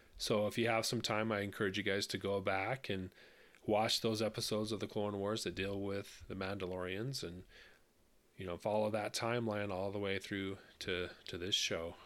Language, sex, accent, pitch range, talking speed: English, male, American, 95-115 Hz, 200 wpm